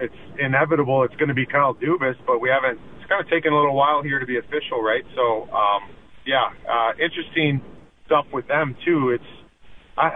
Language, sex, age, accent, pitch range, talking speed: English, male, 40-59, American, 130-155 Hz, 200 wpm